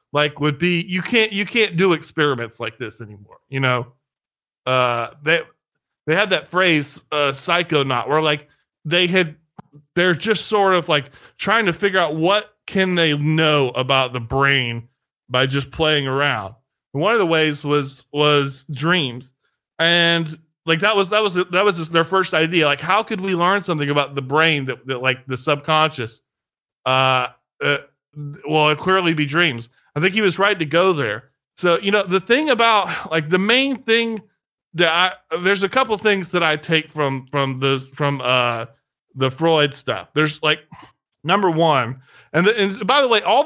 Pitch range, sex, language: 135-180 Hz, male, English